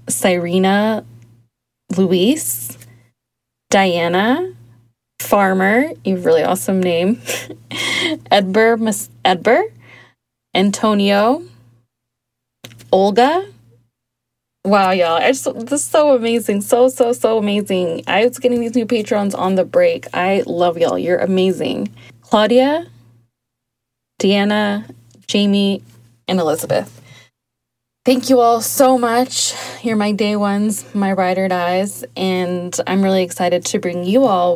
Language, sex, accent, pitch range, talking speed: English, female, American, 165-215 Hz, 110 wpm